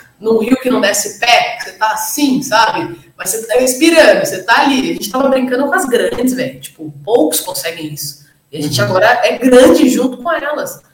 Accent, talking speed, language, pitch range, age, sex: Brazilian, 210 wpm, Portuguese, 170-225 Hz, 20-39, female